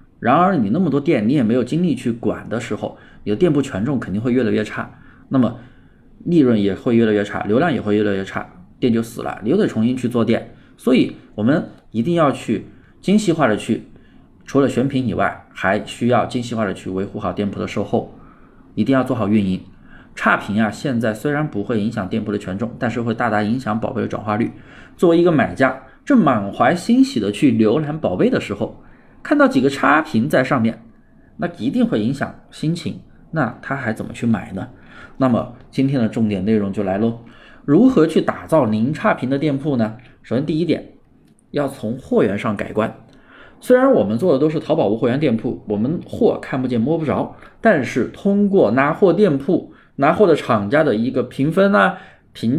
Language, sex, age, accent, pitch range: Chinese, male, 20-39, native, 105-145 Hz